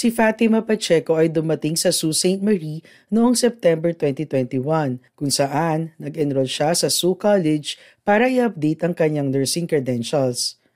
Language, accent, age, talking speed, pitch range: Filipino, native, 40-59, 135 wpm, 140-195 Hz